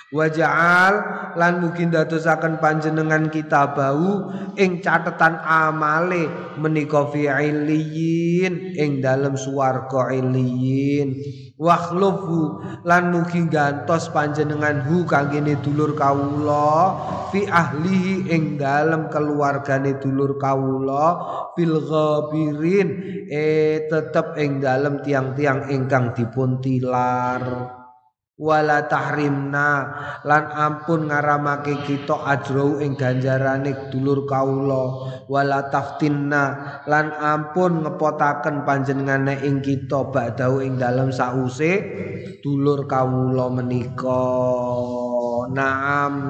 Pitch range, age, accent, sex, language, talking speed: 130-155 Hz, 20-39, native, male, Indonesian, 85 wpm